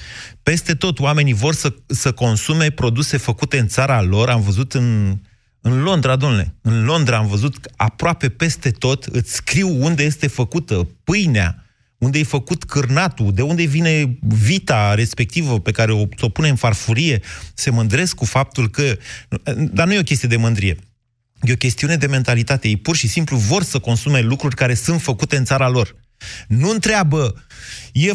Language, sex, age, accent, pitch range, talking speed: Romanian, male, 30-49, native, 115-155 Hz, 175 wpm